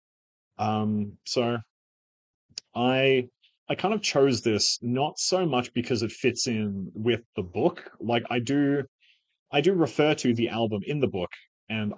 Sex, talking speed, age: male, 155 wpm, 30-49